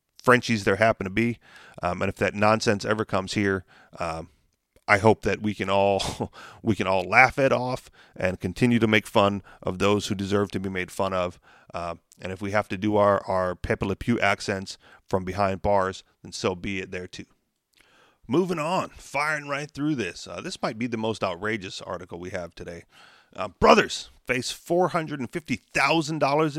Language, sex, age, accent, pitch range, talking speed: English, male, 30-49, American, 100-145 Hz, 185 wpm